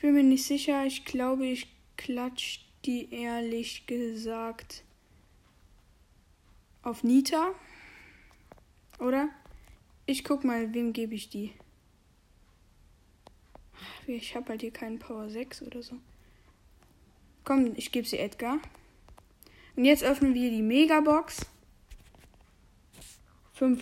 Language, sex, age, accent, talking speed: German, female, 10-29, German, 110 wpm